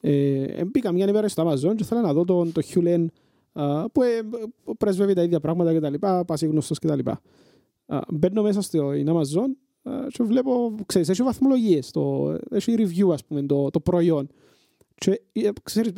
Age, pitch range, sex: 30-49, 150-190 Hz, male